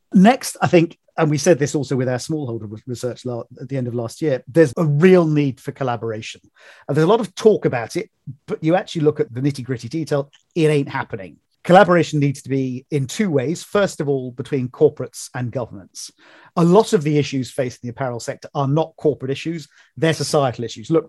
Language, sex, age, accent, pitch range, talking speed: English, male, 40-59, British, 125-160 Hz, 215 wpm